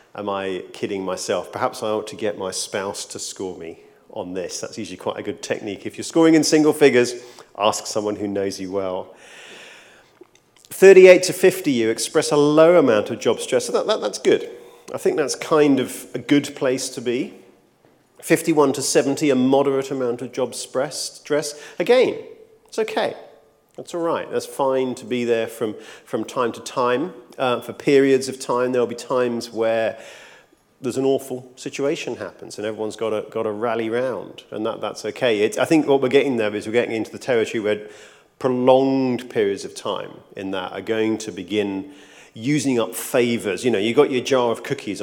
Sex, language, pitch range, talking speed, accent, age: male, English, 115-155 Hz, 190 wpm, British, 40-59